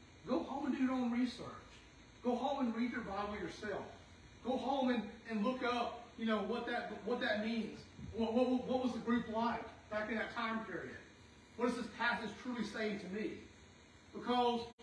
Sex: male